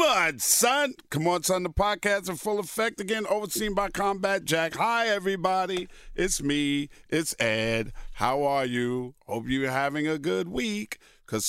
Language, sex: English, male